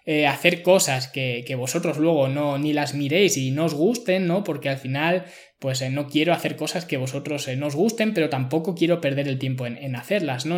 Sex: male